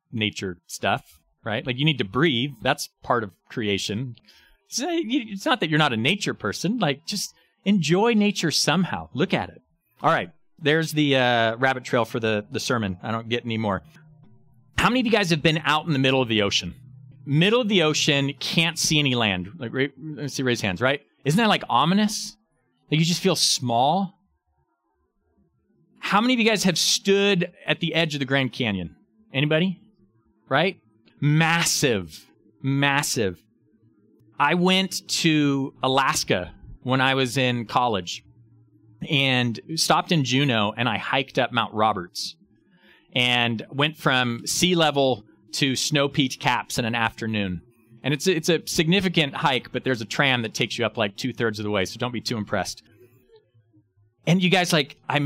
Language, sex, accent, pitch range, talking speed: English, male, American, 115-165 Hz, 175 wpm